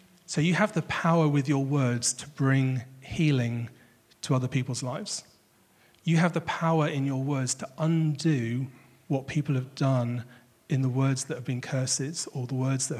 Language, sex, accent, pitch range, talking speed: English, male, British, 130-155 Hz, 180 wpm